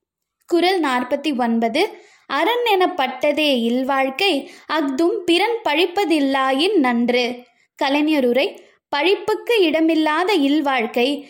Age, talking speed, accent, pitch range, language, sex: 20-39, 65 wpm, native, 260-355 Hz, Tamil, female